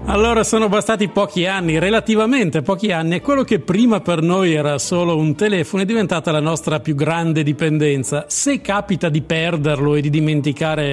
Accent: native